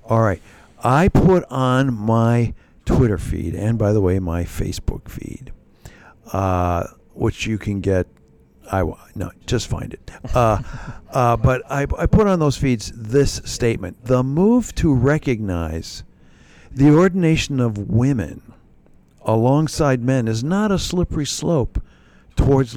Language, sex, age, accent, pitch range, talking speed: English, male, 60-79, American, 100-140 Hz, 135 wpm